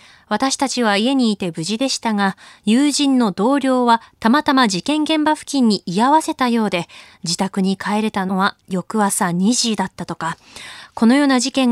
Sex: female